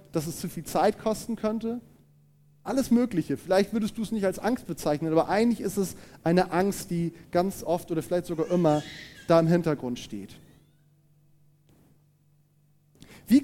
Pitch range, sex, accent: 165-230 Hz, male, German